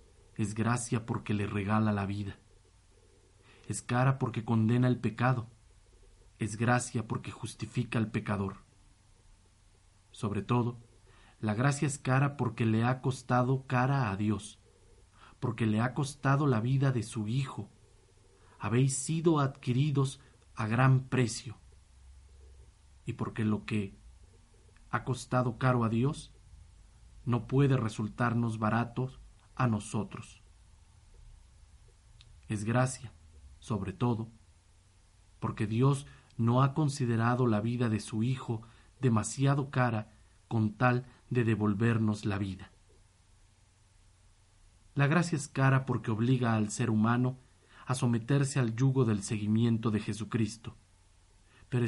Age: 40-59